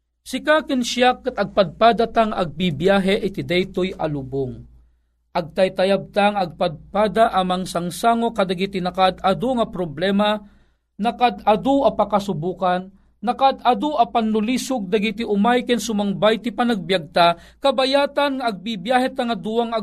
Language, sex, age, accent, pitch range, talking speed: Filipino, male, 40-59, native, 190-250 Hz, 95 wpm